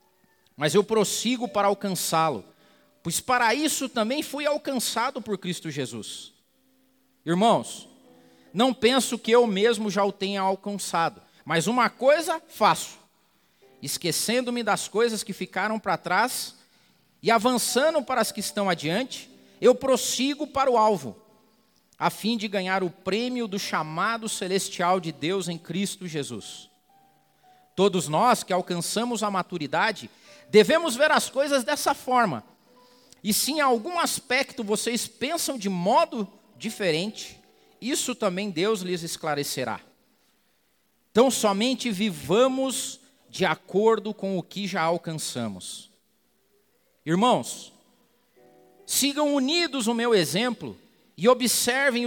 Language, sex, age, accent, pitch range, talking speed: Portuguese, male, 40-59, Brazilian, 185-250 Hz, 120 wpm